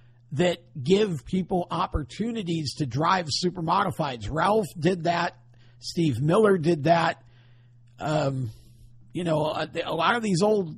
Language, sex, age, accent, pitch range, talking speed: English, male, 50-69, American, 125-185 Hz, 135 wpm